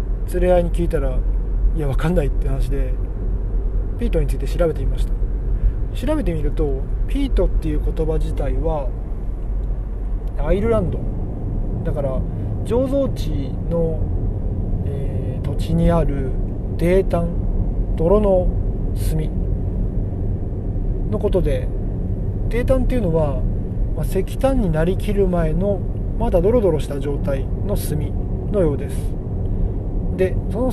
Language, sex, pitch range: Japanese, male, 95-140 Hz